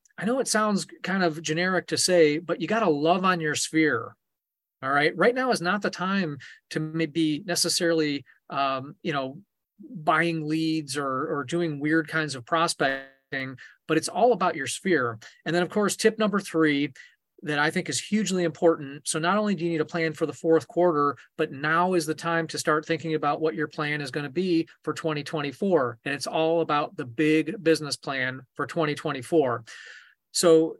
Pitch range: 150-175 Hz